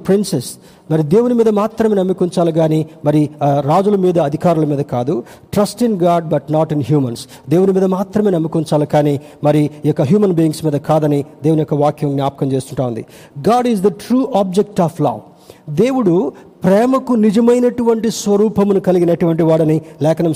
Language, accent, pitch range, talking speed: Telugu, native, 150-195 Hz, 155 wpm